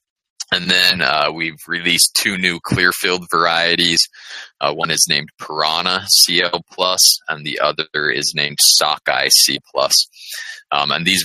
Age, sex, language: 20-39, male, English